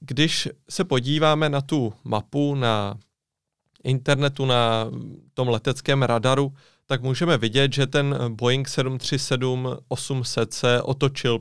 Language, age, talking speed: Czech, 30-49, 110 wpm